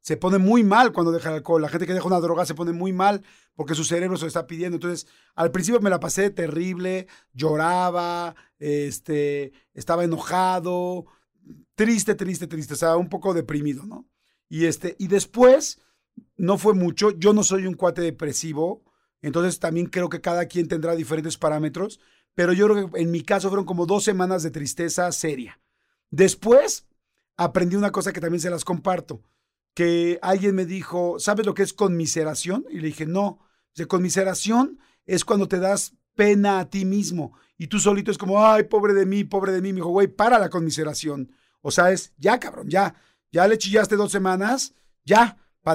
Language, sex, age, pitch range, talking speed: Spanish, male, 40-59, 165-205 Hz, 190 wpm